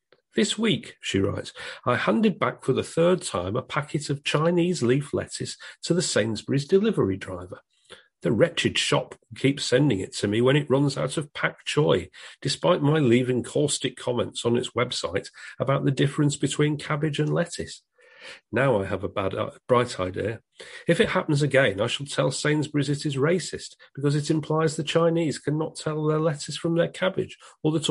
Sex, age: male, 40-59